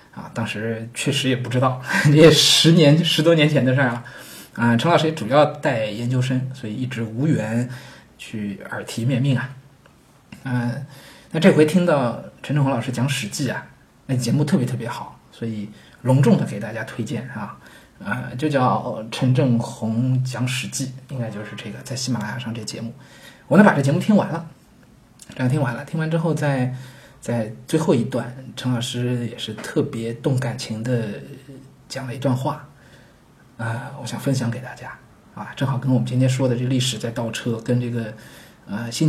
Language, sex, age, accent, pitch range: Chinese, male, 20-39, native, 120-140 Hz